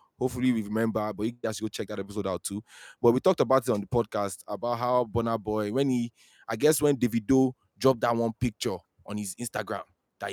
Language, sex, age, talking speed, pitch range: English, male, 20-39, 225 wpm, 105-135 Hz